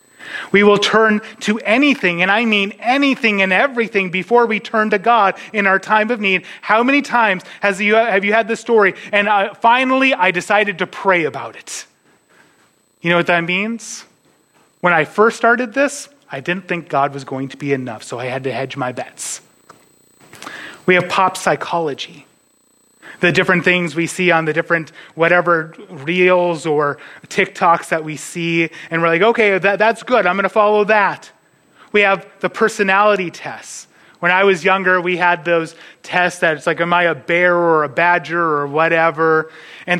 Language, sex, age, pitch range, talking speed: English, male, 30-49, 165-205 Hz, 185 wpm